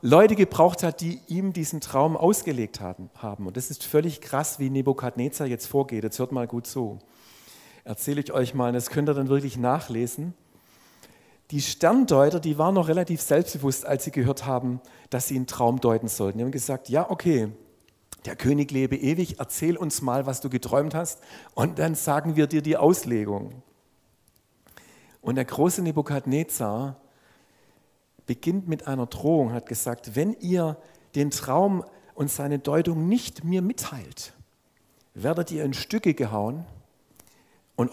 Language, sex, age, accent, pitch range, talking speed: German, male, 50-69, German, 125-165 Hz, 155 wpm